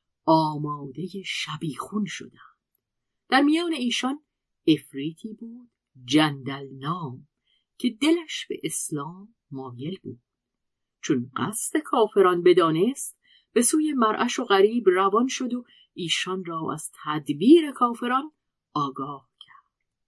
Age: 50-69